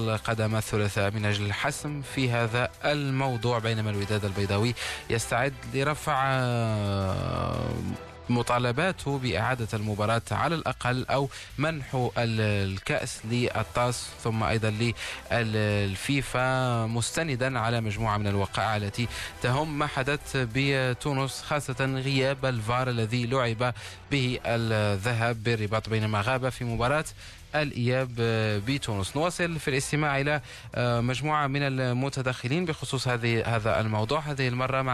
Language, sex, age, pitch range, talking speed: Arabic, male, 20-39, 110-135 Hz, 110 wpm